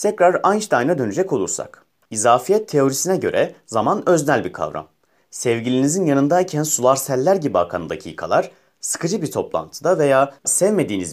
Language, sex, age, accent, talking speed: Turkish, male, 30-49, native, 125 wpm